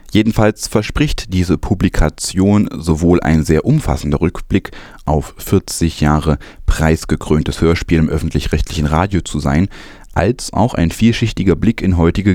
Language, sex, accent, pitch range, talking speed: German, male, German, 80-95 Hz, 125 wpm